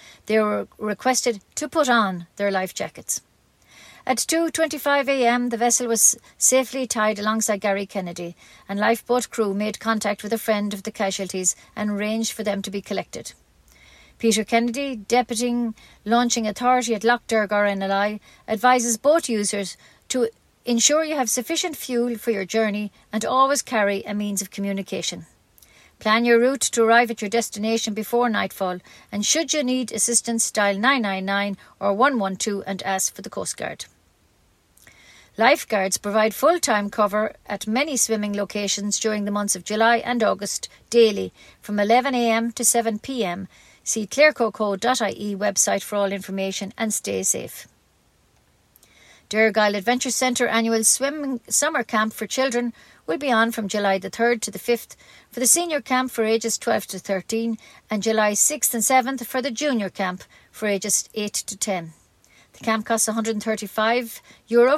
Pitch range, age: 205-245 Hz, 50-69